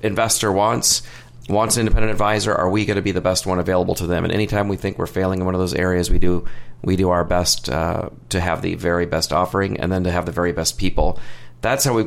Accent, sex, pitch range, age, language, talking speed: American, male, 90-110 Hz, 40-59, English, 260 wpm